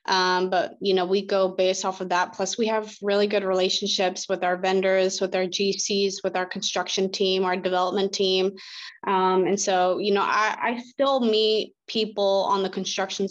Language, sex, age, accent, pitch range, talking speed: English, female, 20-39, American, 185-205 Hz, 190 wpm